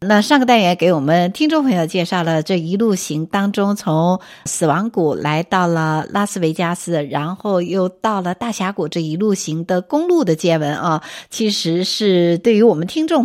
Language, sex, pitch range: Chinese, female, 160-210 Hz